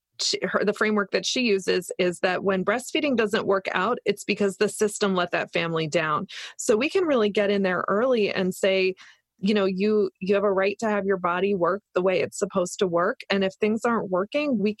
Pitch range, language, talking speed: 185-215 Hz, English, 220 wpm